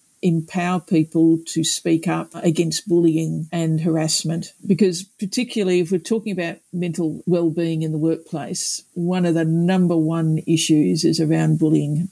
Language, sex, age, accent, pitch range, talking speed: English, female, 50-69, Australian, 160-195 Hz, 145 wpm